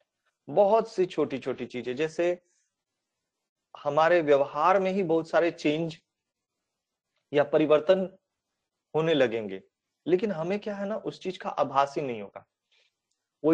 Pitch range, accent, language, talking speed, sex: 130-175 Hz, native, Hindi, 135 wpm, male